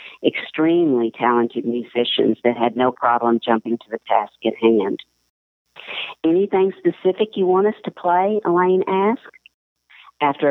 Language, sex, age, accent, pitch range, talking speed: English, female, 50-69, American, 120-155 Hz, 130 wpm